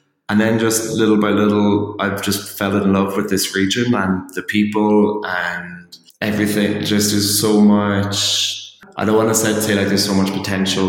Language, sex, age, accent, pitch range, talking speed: English, male, 20-39, Irish, 95-105 Hz, 185 wpm